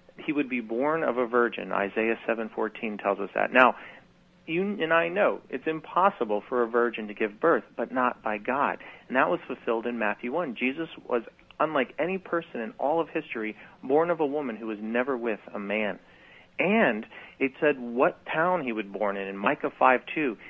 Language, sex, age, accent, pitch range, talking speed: English, male, 40-59, American, 110-140 Hz, 200 wpm